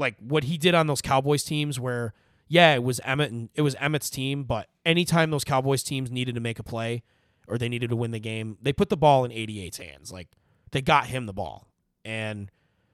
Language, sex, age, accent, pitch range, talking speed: English, male, 20-39, American, 120-155 Hz, 225 wpm